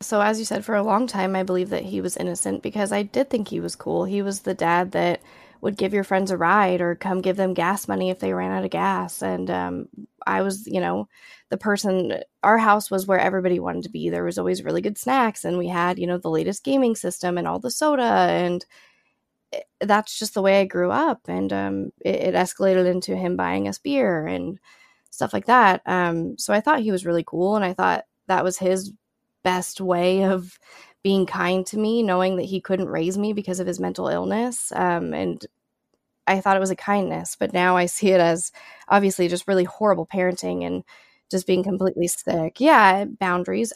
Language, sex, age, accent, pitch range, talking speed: English, female, 20-39, American, 180-210 Hz, 220 wpm